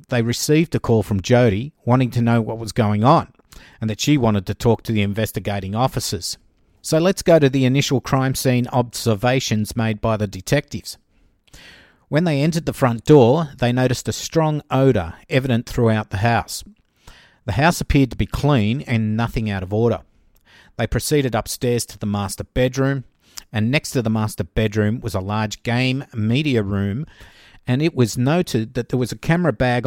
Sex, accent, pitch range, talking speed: male, Australian, 105-135 Hz, 185 wpm